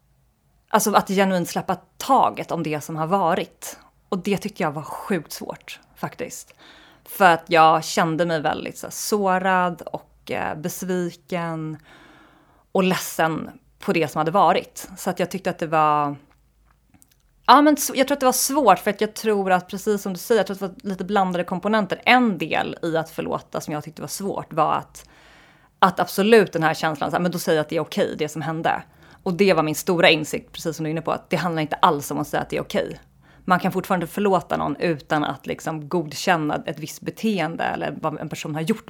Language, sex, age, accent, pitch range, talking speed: Swedish, female, 30-49, native, 155-195 Hz, 215 wpm